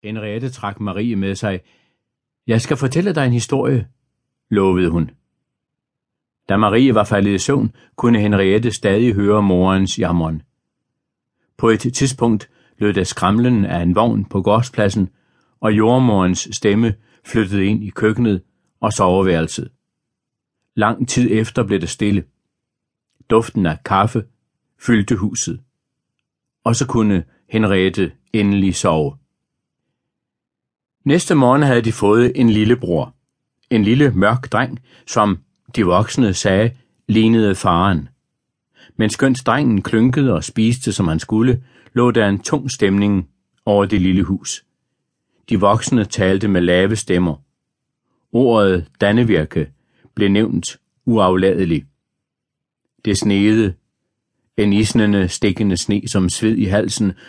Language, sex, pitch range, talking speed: Danish, male, 95-120 Hz, 125 wpm